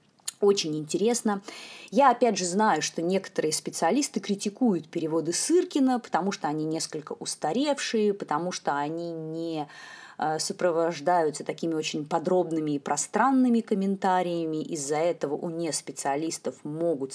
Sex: female